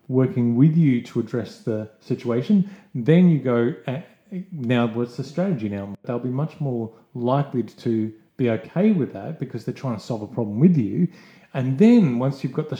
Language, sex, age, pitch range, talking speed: English, male, 40-59, 120-165 Hz, 190 wpm